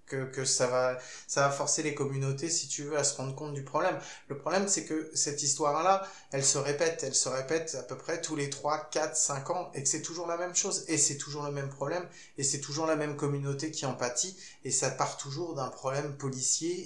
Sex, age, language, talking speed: male, 20-39, French, 240 wpm